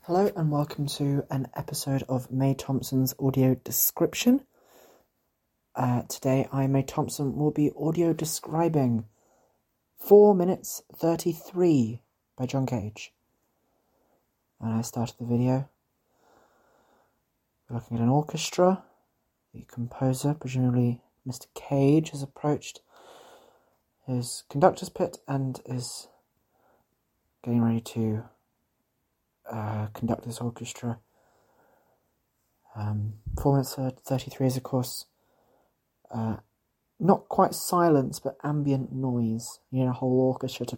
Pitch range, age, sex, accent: 115-140 Hz, 30-49, male, British